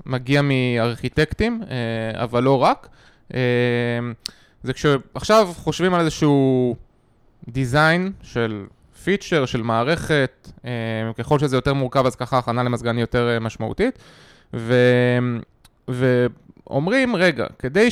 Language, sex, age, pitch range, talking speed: Hebrew, male, 20-39, 125-195 Hz, 95 wpm